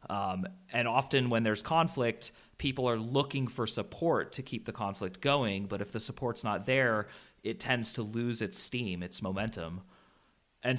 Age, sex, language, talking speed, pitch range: 30-49, male, English, 170 wpm, 105-135 Hz